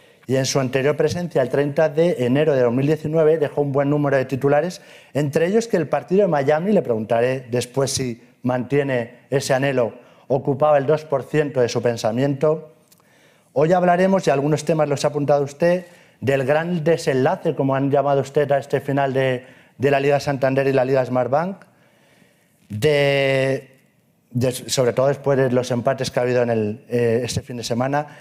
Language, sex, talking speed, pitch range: Spanish, male, 175 wpm, 135-155 Hz